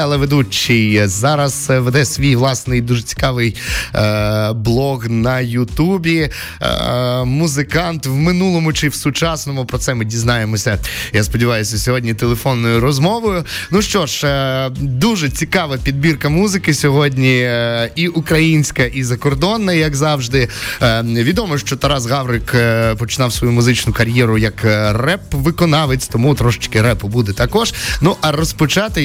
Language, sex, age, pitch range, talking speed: Ukrainian, male, 20-39, 115-145 Hz, 130 wpm